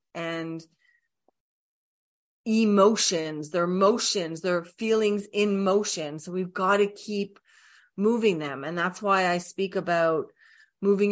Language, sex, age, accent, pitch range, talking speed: English, female, 40-59, American, 165-215 Hz, 120 wpm